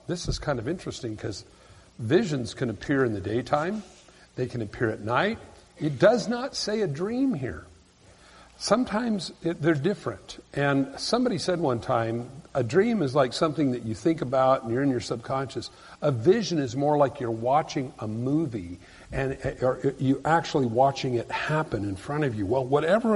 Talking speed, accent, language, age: 175 wpm, American, English, 50-69